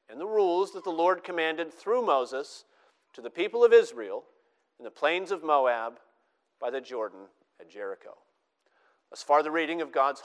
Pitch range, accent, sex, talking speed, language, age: 165-255 Hz, American, male, 180 wpm, English, 40-59